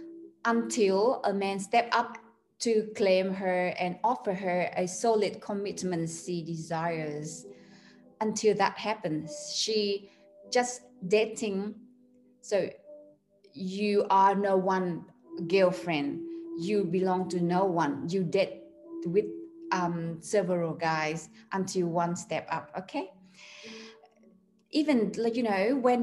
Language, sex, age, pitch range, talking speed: Vietnamese, female, 20-39, 185-230 Hz, 115 wpm